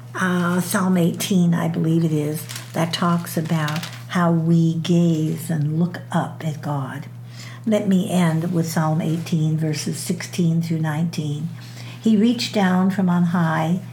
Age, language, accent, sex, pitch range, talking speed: 60-79, English, American, female, 150-175 Hz, 145 wpm